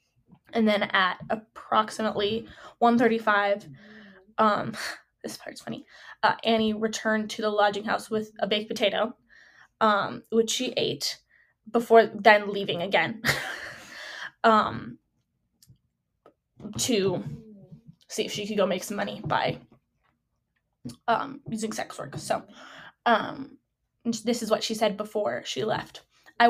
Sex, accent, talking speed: female, American, 125 wpm